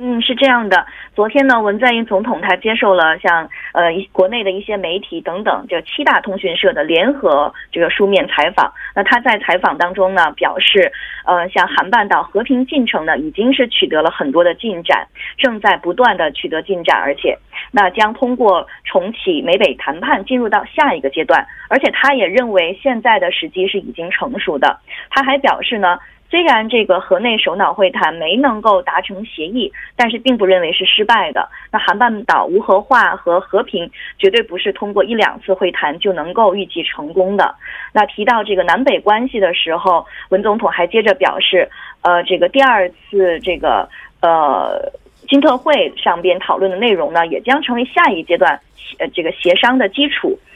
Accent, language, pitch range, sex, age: Chinese, Korean, 185-255 Hz, female, 20-39